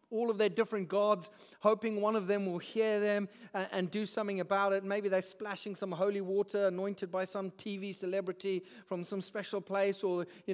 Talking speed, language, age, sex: 200 wpm, English, 40-59, male